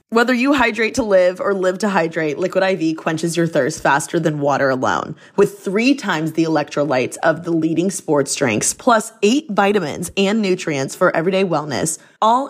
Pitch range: 165-220 Hz